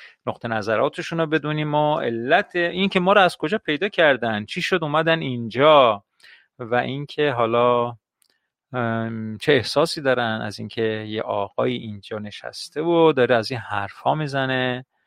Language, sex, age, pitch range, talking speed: Persian, male, 40-59, 120-170 Hz, 140 wpm